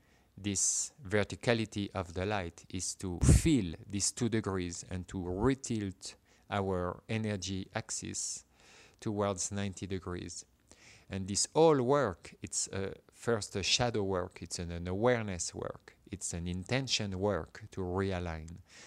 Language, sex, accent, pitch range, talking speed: English, male, French, 95-115 Hz, 130 wpm